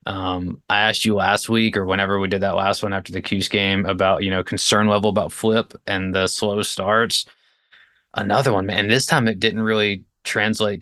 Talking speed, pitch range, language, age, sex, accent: 205 wpm, 100-125 Hz, English, 20-39, male, American